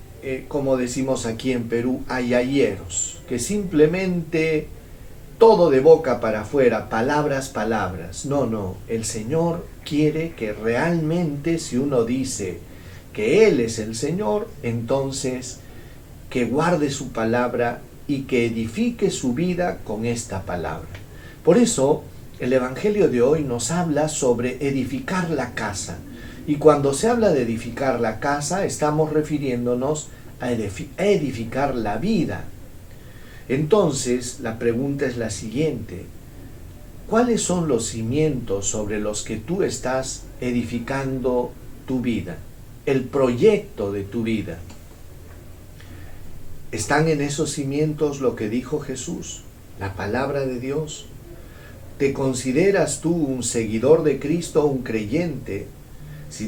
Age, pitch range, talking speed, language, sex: 40-59, 115-150 Hz, 120 wpm, Spanish, male